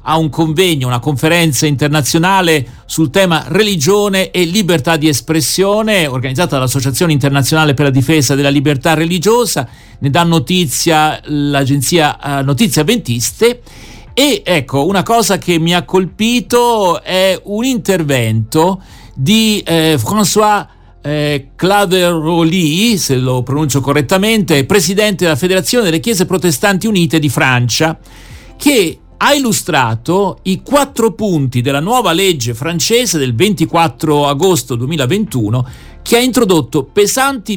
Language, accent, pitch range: Italian, native, 140-195 Hz